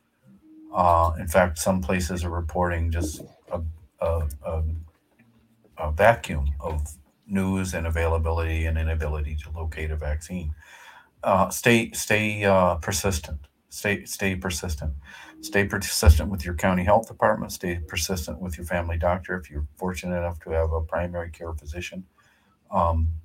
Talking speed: 140 wpm